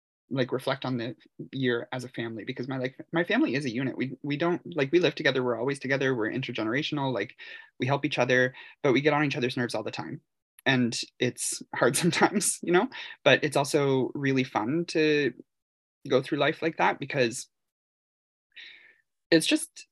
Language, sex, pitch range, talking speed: English, male, 125-165 Hz, 190 wpm